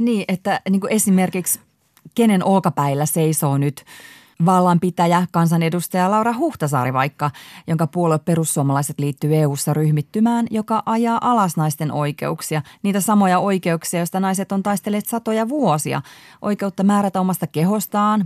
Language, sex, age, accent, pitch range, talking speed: Finnish, female, 30-49, native, 155-205 Hz, 125 wpm